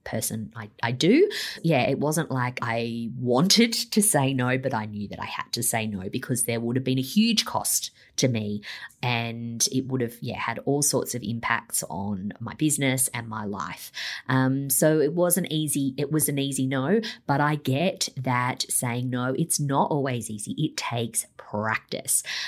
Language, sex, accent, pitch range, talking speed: English, female, Australian, 115-140 Hz, 190 wpm